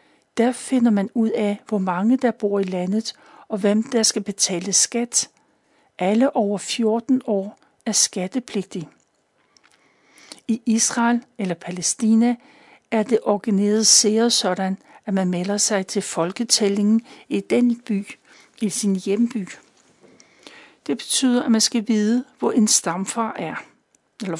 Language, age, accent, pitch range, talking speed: Danish, 60-79, native, 190-235 Hz, 135 wpm